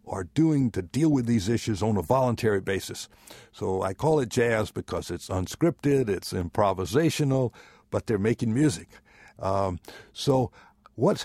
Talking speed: 150 wpm